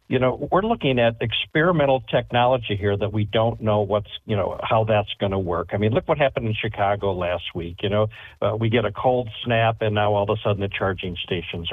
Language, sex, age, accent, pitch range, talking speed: English, male, 50-69, American, 100-115 Hz, 235 wpm